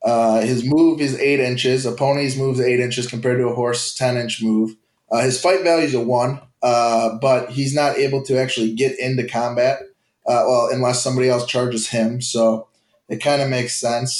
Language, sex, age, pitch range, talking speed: English, male, 20-39, 115-140 Hz, 200 wpm